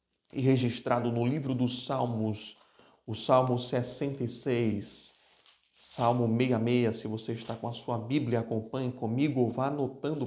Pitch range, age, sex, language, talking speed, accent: 110-135 Hz, 40-59, male, Portuguese, 130 wpm, Brazilian